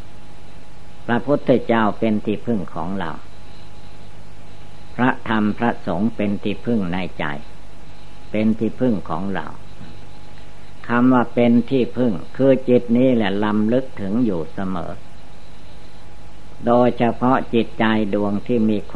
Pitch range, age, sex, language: 95-115 Hz, 60-79, female, Thai